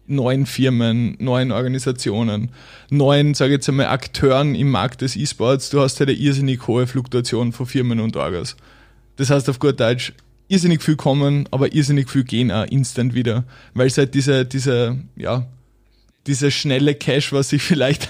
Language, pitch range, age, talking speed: German, 125-145 Hz, 20-39, 170 wpm